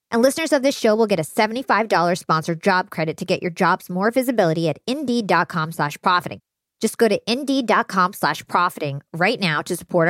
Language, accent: English, American